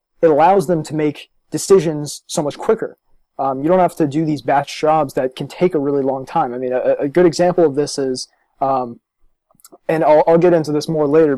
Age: 20-39